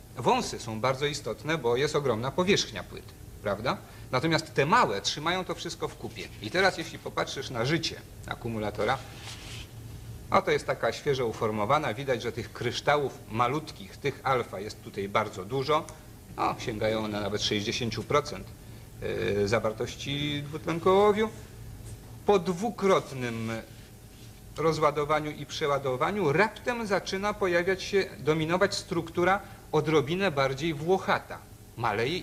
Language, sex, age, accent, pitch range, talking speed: Polish, male, 50-69, native, 110-165 Hz, 115 wpm